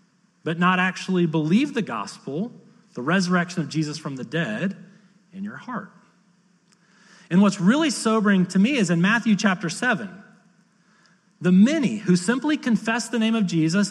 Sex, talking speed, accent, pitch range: male, 155 wpm, American, 180-215 Hz